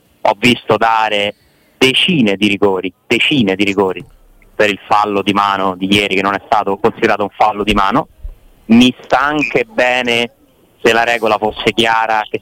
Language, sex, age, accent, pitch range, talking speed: Italian, male, 30-49, native, 100-115 Hz, 170 wpm